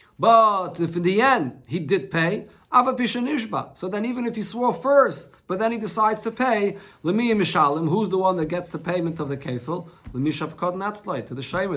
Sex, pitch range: male, 140-210 Hz